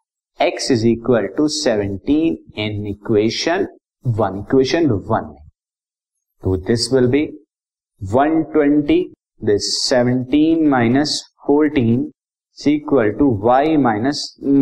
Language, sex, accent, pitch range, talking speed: Hindi, male, native, 110-145 Hz, 110 wpm